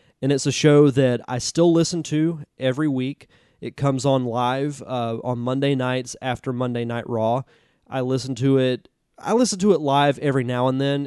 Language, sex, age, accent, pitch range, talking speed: English, male, 20-39, American, 120-135 Hz, 195 wpm